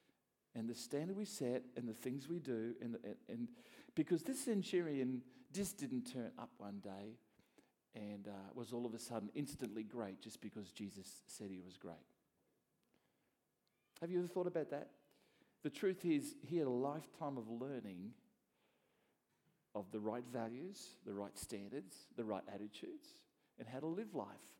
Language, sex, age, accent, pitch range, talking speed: English, male, 50-69, Australian, 115-165 Hz, 165 wpm